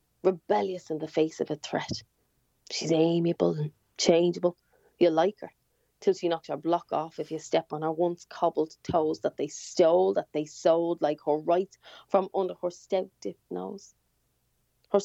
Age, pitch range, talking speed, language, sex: 20-39, 160-205 Hz, 170 wpm, English, female